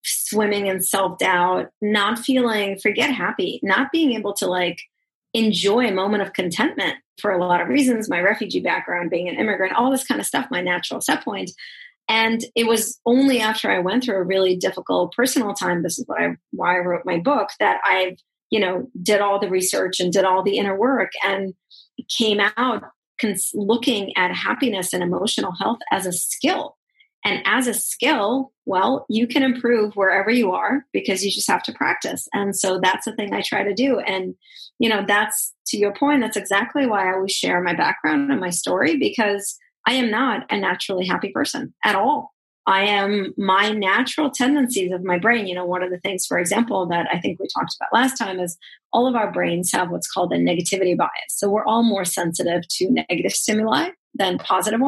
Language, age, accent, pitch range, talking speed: English, 30-49, American, 185-240 Hz, 205 wpm